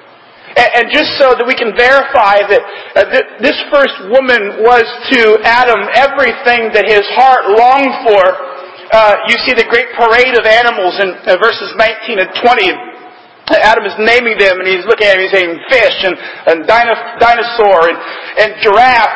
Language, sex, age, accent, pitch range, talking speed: English, male, 40-59, American, 195-260 Hz, 165 wpm